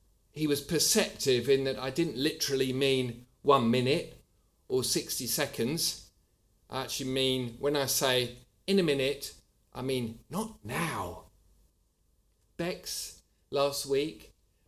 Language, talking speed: English, 125 wpm